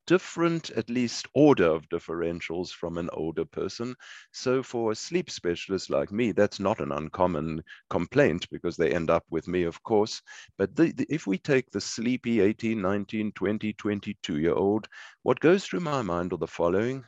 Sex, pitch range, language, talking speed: male, 90-110 Hz, English, 185 wpm